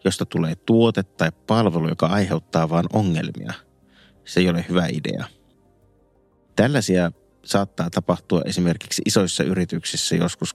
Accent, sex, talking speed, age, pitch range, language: native, male, 120 wpm, 30-49, 85-105 Hz, Finnish